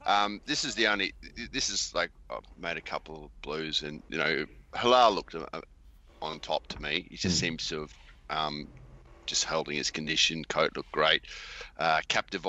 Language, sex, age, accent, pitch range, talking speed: English, male, 30-49, Australian, 75-90 Hz, 200 wpm